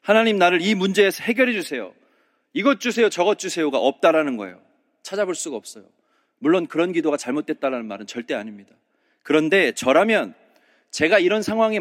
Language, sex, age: Korean, male, 30-49